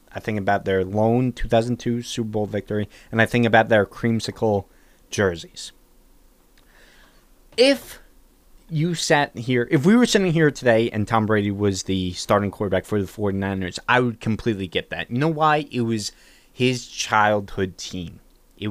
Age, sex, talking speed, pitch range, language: 20-39, male, 165 wpm, 100-125 Hz, English